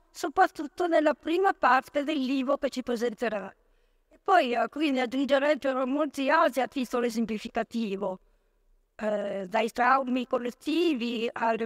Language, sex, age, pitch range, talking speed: Italian, female, 50-69, 245-315 Hz, 120 wpm